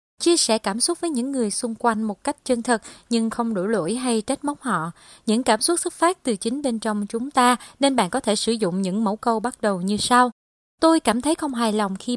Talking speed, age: 255 wpm, 20-39